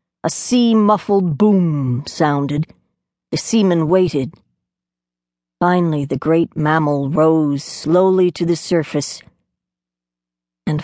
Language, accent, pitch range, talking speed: English, American, 140-210 Hz, 95 wpm